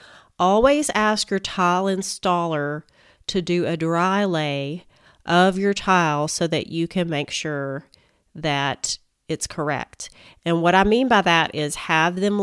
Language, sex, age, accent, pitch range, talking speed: English, female, 40-59, American, 150-180 Hz, 150 wpm